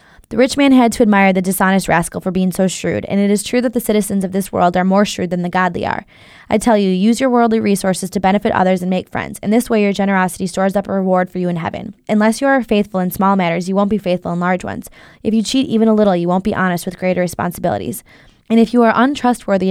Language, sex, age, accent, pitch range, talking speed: English, female, 20-39, American, 185-220 Hz, 270 wpm